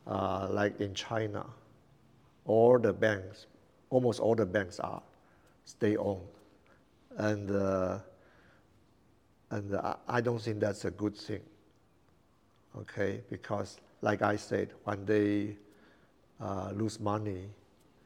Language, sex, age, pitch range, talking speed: English, male, 60-79, 100-110 Hz, 115 wpm